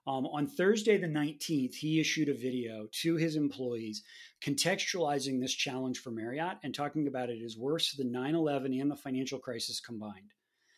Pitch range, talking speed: 130-155 Hz, 165 wpm